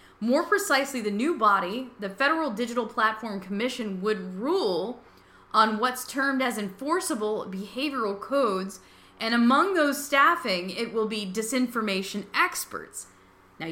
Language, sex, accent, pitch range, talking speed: English, female, American, 215-280 Hz, 125 wpm